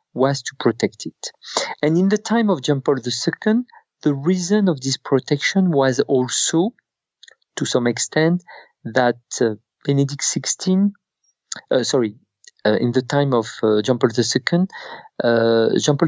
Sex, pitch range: male, 120-165 Hz